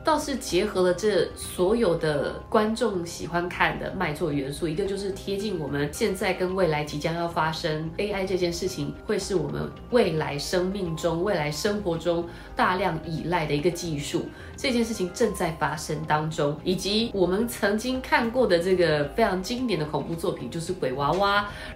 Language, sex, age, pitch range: Chinese, female, 20-39, 160-205 Hz